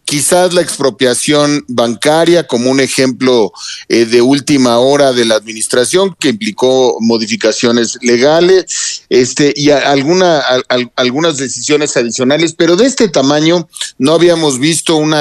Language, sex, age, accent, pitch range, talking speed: Spanish, male, 50-69, Mexican, 130-190 Hz, 130 wpm